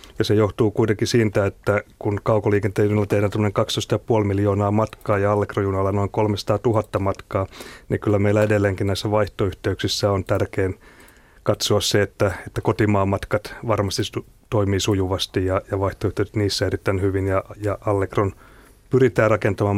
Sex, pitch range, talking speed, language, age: male, 100-110 Hz, 145 wpm, Finnish, 30-49